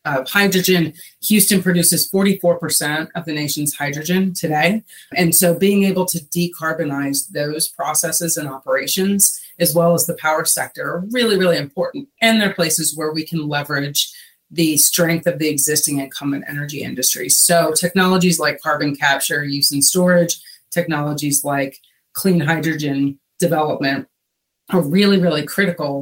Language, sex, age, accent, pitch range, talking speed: English, female, 30-49, American, 145-180 Hz, 140 wpm